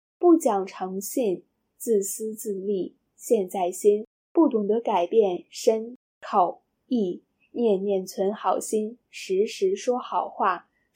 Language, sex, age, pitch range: Chinese, female, 10-29, 195-250 Hz